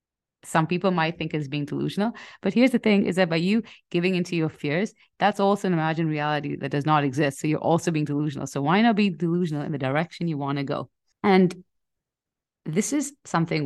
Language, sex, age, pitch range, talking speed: English, female, 30-49, 140-175 Hz, 215 wpm